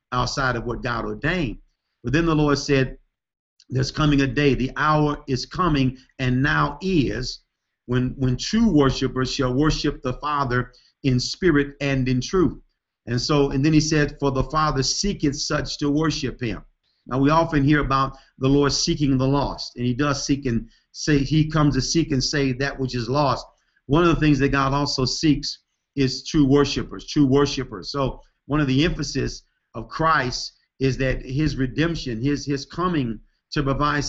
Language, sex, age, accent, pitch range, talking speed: English, male, 50-69, American, 130-145 Hz, 180 wpm